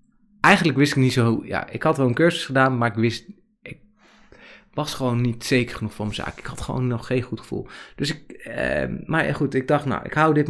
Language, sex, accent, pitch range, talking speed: Dutch, male, Dutch, 110-135 Hz, 240 wpm